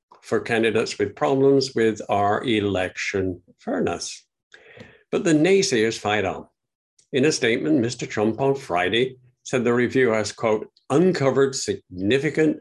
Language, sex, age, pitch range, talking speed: English, male, 60-79, 110-140 Hz, 130 wpm